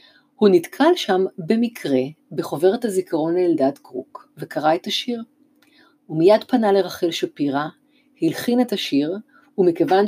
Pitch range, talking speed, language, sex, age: 175-270 Hz, 115 wpm, Hebrew, female, 50-69